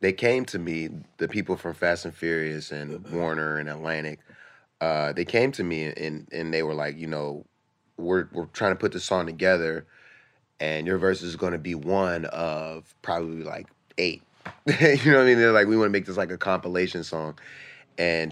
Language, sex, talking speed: English, male, 200 wpm